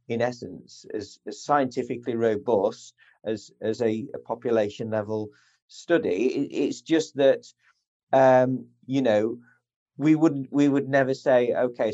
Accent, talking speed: British, 135 wpm